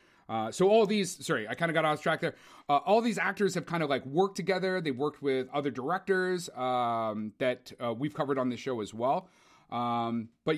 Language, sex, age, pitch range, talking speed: English, male, 30-49, 130-165 Hz, 220 wpm